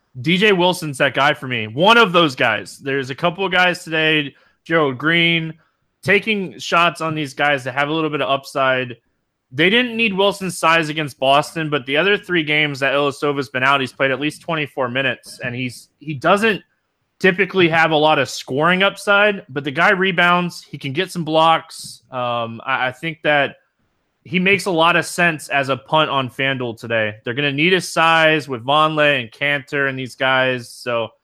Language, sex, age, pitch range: English, male, 20-39, 130-165 Hz